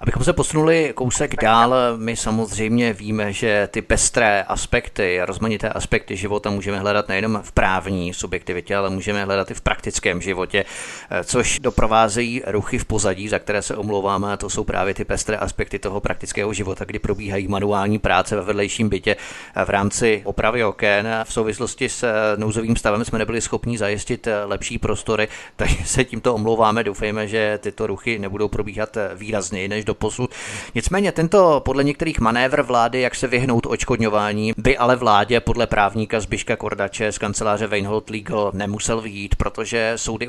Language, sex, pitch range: Czech, male, 100-115 Hz